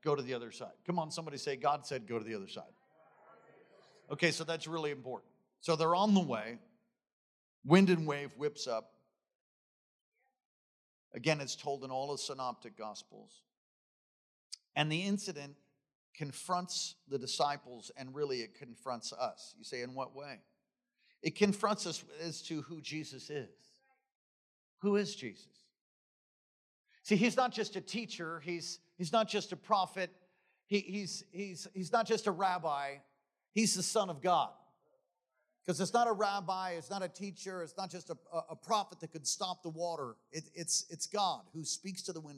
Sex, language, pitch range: male, English, 145-195 Hz